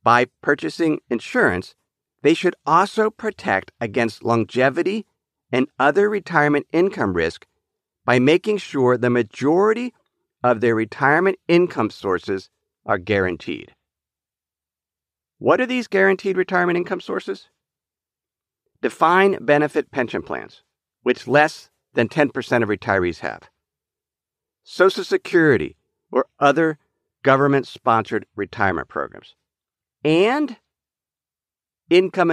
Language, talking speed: English, 100 wpm